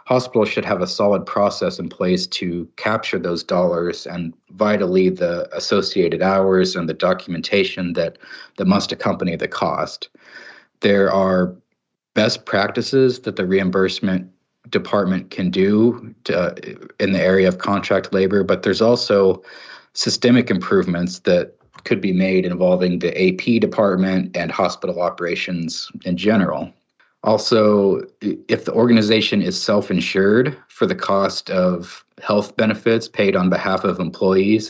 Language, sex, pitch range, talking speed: English, male, 90-110 Hz, 135 wpm